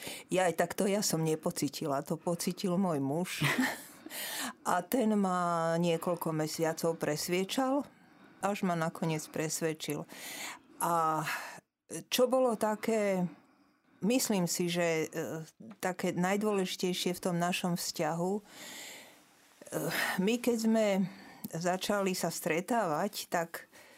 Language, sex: Slovak, female